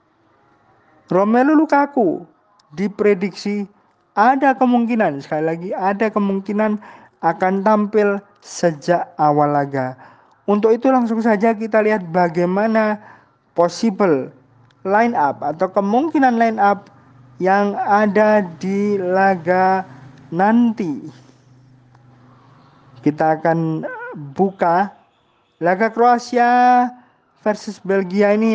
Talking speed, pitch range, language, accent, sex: 85 wpm, 170-220 Hz, Indonesian, native, male